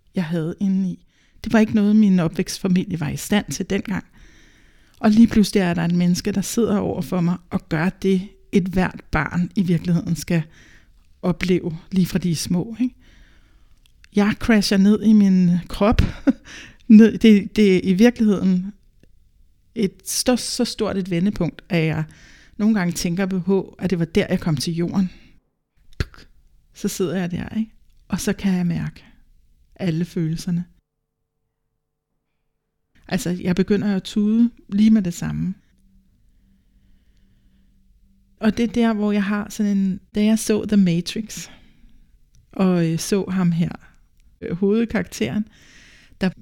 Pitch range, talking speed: 175-210 Hz, 150 wpm